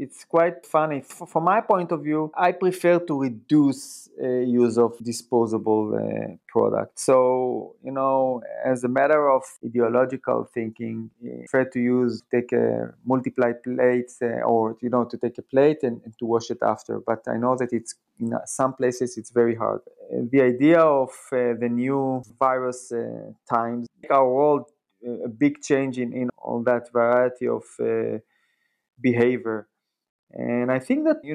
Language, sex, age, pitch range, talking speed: English, male, 30-49, 120-145 Hz, 165 wpm